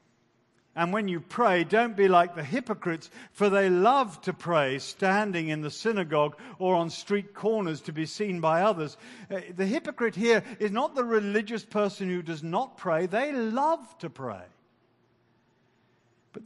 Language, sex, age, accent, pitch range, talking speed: English, male, 50-69, British, 120-200 Hz, 165 wpm